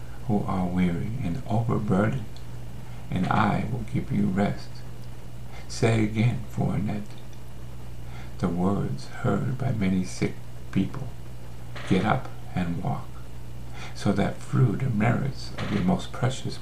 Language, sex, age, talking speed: English, male, 70-89, 125 wpm